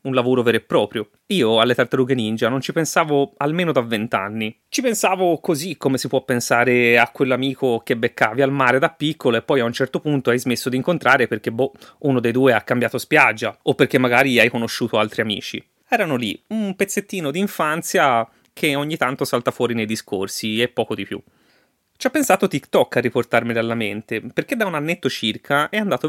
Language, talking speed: Italian, 200 wpm